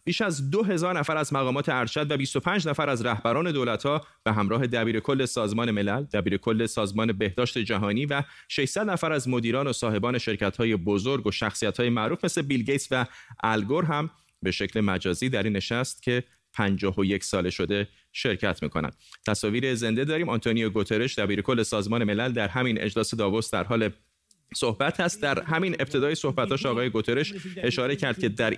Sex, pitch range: male, 110-140 Hz